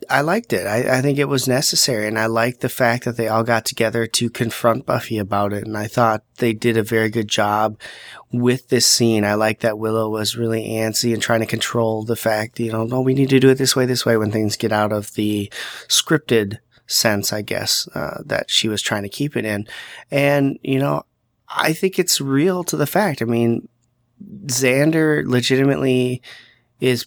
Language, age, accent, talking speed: English, 30-49, American, 215 wpm